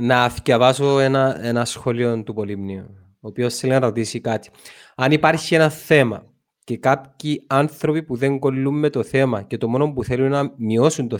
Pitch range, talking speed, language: 120-155 Hz, 180 wpm, Greek